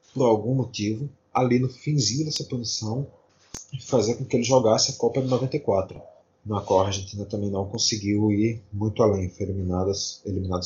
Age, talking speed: 20-39, 175 wpm